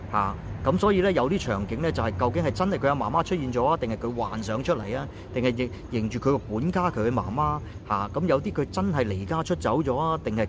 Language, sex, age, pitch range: Chinese, male, 30-49, 100-140 Hz